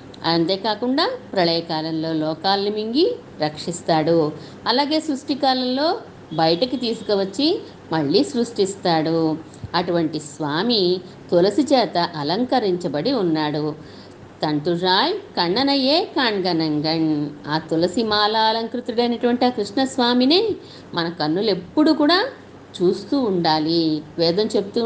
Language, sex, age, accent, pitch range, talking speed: Telugu, female, 50-69, native, 165-250 Hz, 85 wpm